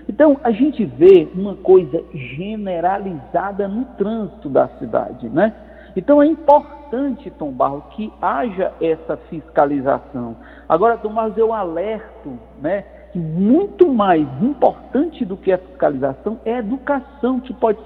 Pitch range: 185-265 Hz